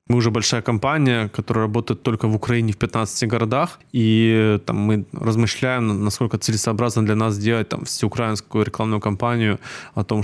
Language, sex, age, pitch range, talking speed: Ukrainian, male, 20-39, 115-130 Hz, 160 wpm